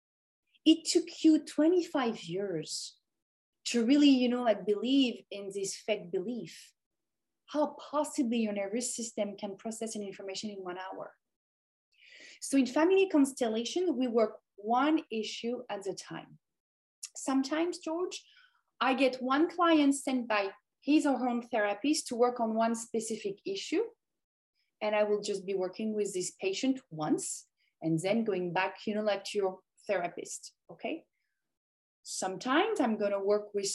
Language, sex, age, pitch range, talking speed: English, female, 30-49, 200-275 Hz, 150 wpm